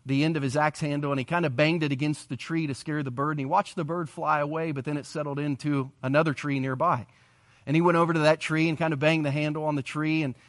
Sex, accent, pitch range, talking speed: male, American, 130-160 Hz, 290 wpm